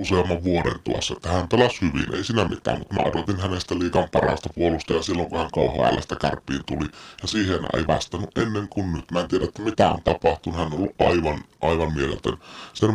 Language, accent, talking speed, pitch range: Finnish, native, 195 wpm, 80-95 Hz